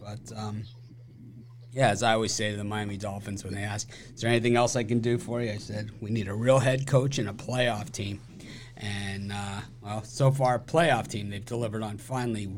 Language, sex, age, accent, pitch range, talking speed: English, male, 30-49, American, 105-120 Hz, 220 wpm